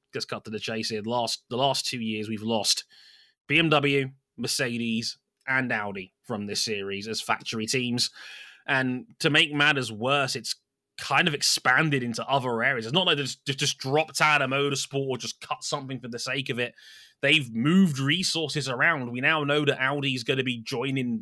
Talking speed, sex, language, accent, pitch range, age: 190 wpm, male, English, British, 125-155 Hz, 20-39